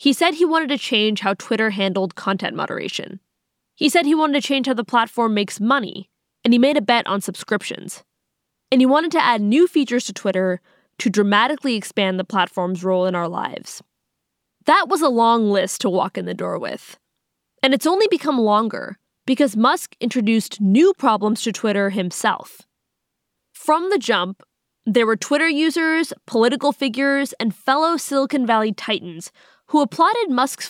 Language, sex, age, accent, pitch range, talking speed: English, female, 20-39, American, 205-275 Hz, 170 wpm